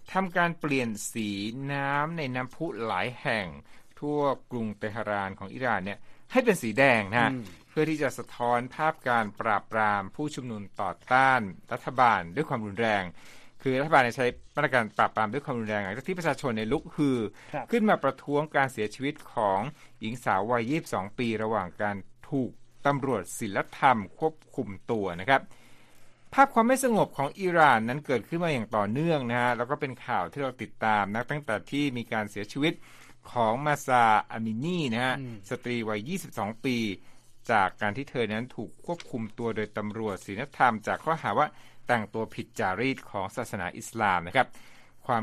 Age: 60-79